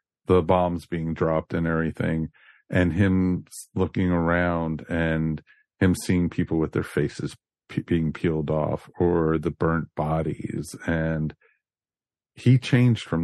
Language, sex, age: English, male, 40-59